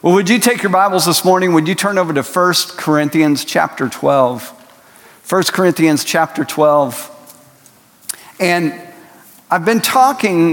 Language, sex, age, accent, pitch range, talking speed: English, male, 50-69, American, 150-180 Hz, 140 wpm